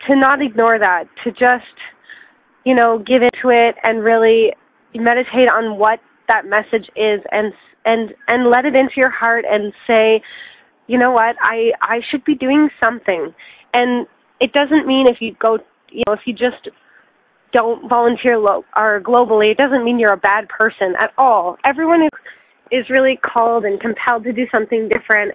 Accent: American